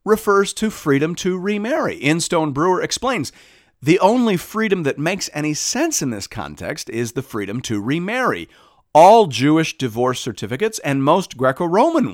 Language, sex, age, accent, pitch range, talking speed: English, male, 40-59, American, 105-160 Hz, 155 wpm